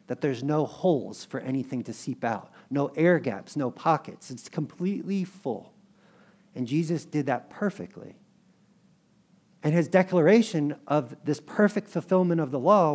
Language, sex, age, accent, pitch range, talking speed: English, male, 50-69, American, 135-195 Hz, 150 wpm